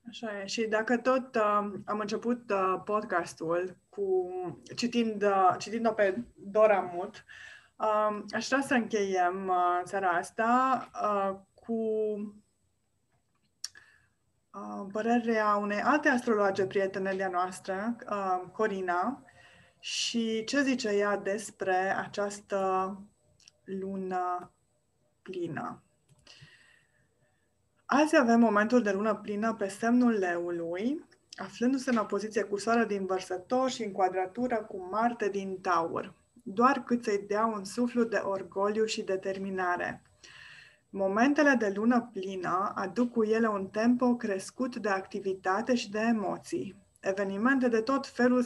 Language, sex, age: Romanian, female, 20-39